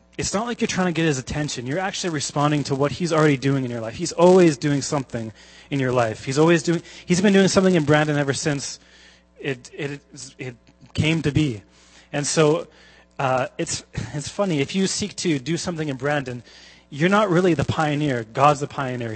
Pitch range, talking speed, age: 125-165 Hz, 205 wpm, 30-49